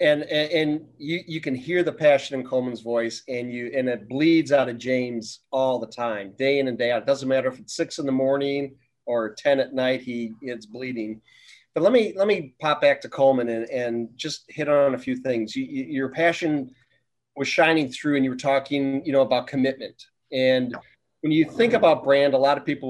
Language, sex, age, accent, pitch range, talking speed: English, male, 40-59, American, 125-150 Hz, 225 wpm